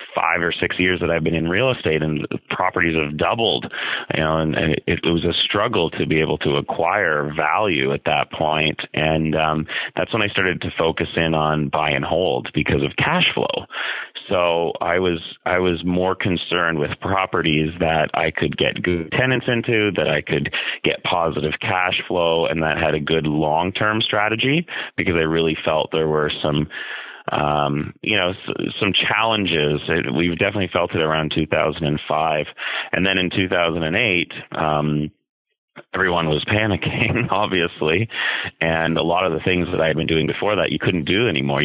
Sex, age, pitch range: male, 30-49, 75-85 Hz